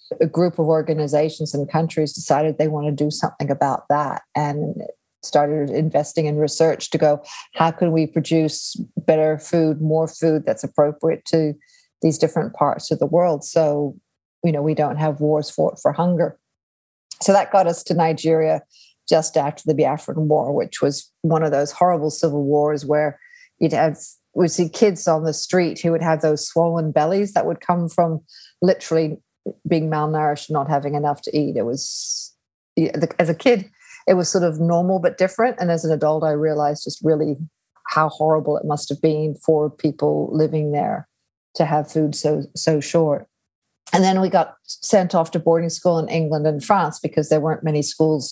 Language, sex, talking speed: English, female, 185 wpm